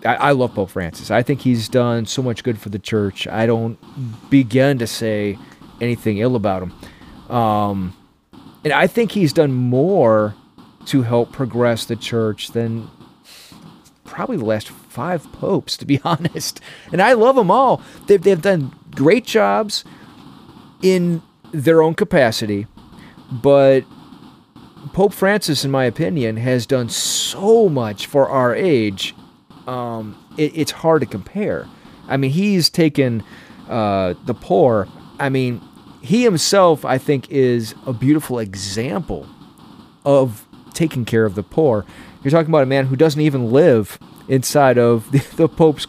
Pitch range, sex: 115-150 Hz, male